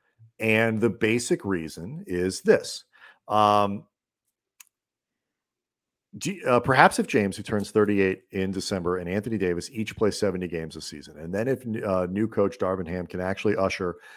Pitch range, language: 90-115 Hz, English